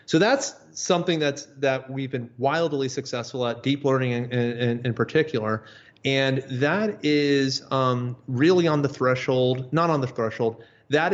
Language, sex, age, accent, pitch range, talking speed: English, male, 30-49, American, 120-145 Hz, 150 wpm